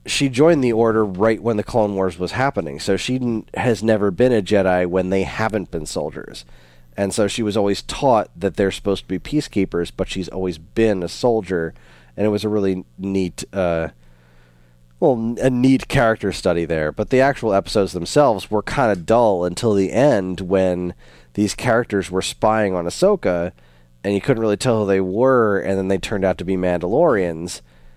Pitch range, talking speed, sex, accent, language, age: 85-105 Hz, 185 wpm, male, American, English, 30-49